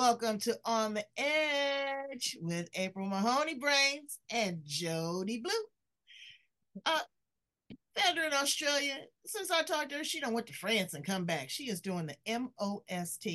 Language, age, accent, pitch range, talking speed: English, 40-59, American, 165-225 Hz, 155 wpm